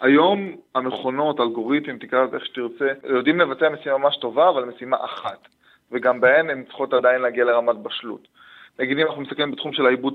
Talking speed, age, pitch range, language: 130 wpm, 20-39, 120-155 Hz, English